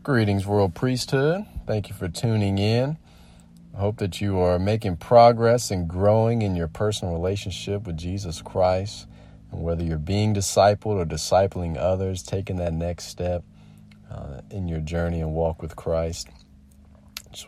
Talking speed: 155 wpm